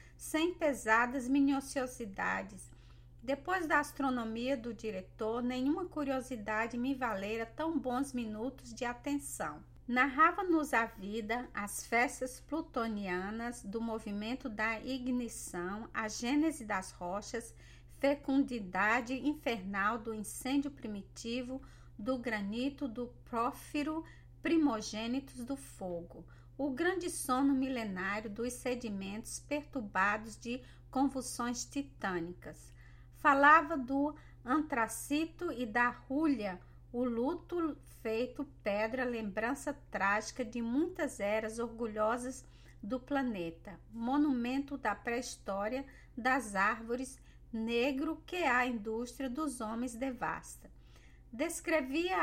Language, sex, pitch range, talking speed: Portuguese, female, 220-275 Hz, 95 wpm